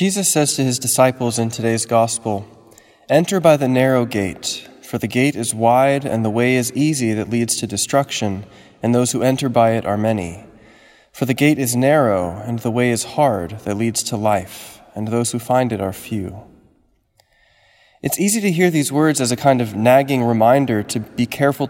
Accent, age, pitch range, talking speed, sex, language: American, 20-39, 115-135 Hz, 195 wpm, male, English